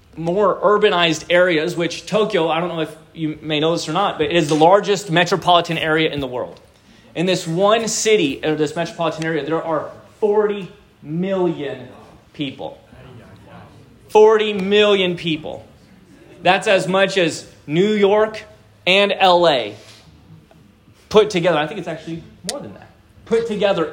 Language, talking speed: English, 150 wpm